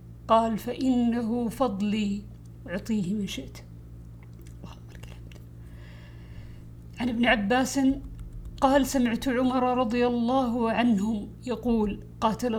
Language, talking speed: Arabic, 80 wpm